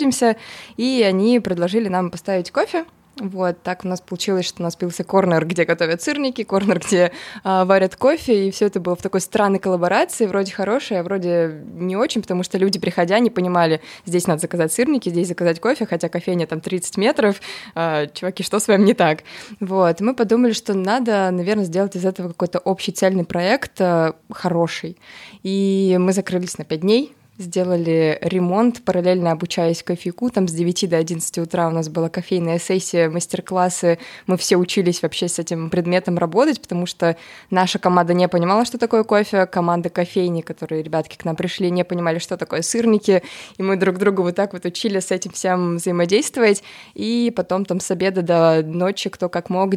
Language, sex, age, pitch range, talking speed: Russian, female, 20-39, 175-200 Hz, 180 wpm